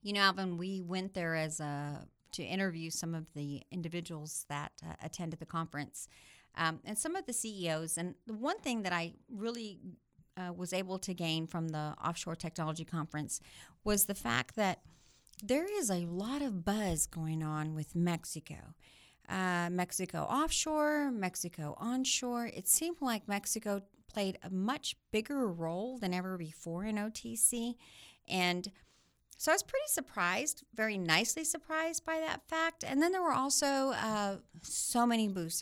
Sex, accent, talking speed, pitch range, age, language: female, American, 160 wpm, 165-225 Hz, 40-59, English